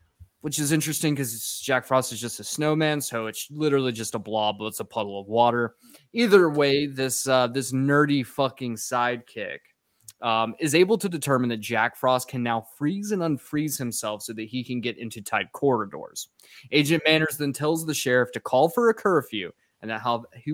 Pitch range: 115-155 Hz